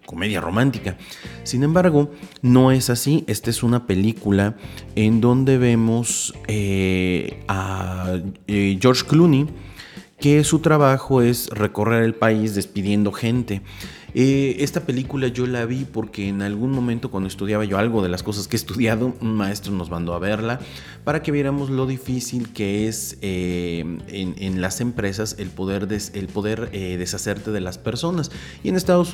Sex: male